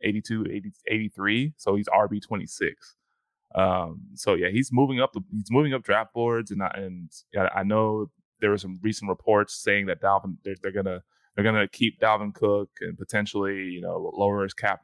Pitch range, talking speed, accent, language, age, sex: 95-110 Hz, 195 wpm, American, English, 20-39, male